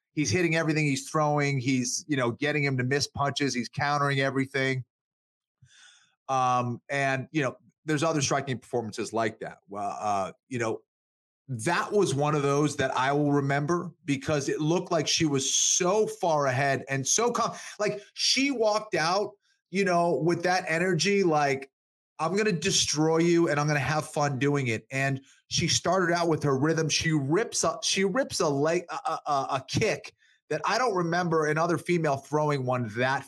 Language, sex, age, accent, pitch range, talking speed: English, male, 30-49, American, 140-180 Hz, 180 wpm